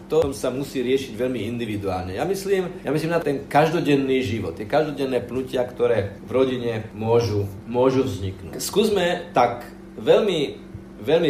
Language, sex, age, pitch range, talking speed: Slovak, male, 40-59, 115-145 Hz, 145 wpm